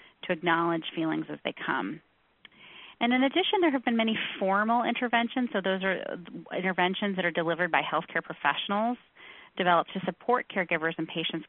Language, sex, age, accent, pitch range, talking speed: English, female, 30-49, American, 165-210 Hz, 160 wpm